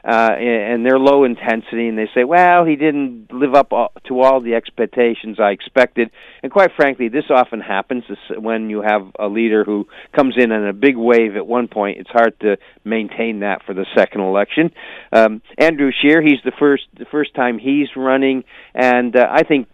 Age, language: 50-69, English